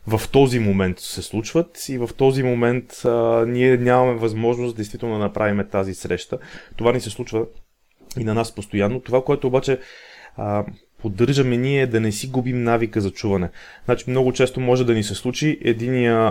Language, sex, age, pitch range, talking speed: Bulgarian, male, 30-49, 100-130 Hz, 180 wpm